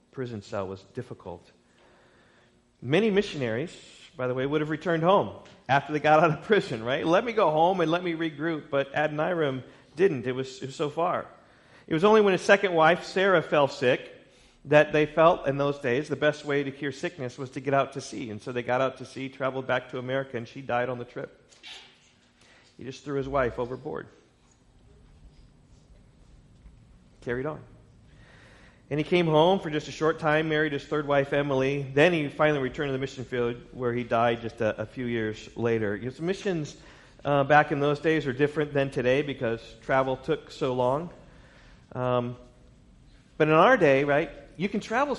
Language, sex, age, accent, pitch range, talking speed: English, male, 40-59, American, 125-160 Hz, 195 wpm